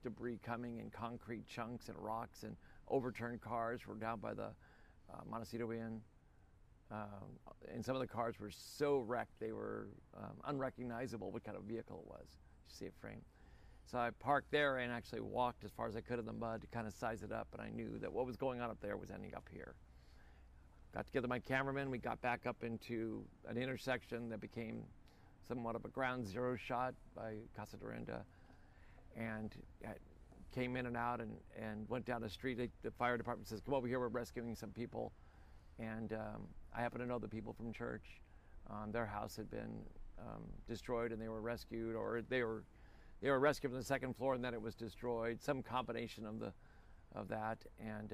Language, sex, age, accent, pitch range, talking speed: English, male, 50-69, American, 105-125 Hz, 200 wpm